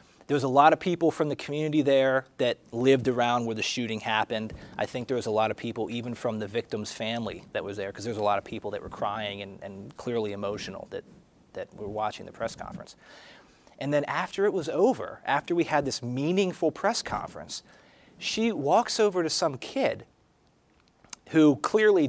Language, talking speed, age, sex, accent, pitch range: English, 205 wpm, 30-49, male, American, 125-170 Hz